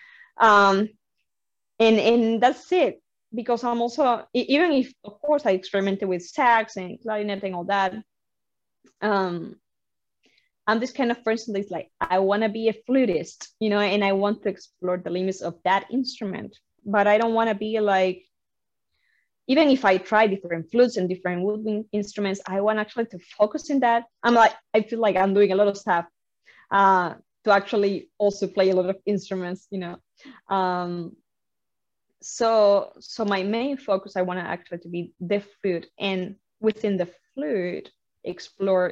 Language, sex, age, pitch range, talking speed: English, female, 20-39, 185-225 Hz, 175 wpm